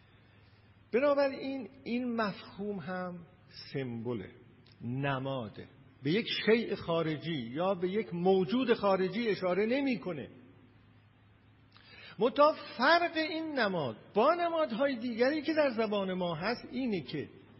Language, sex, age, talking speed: Persian, male, 50-69, 115 wpm